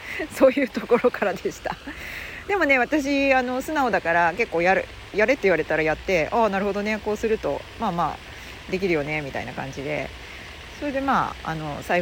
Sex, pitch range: female, 175-280 Hz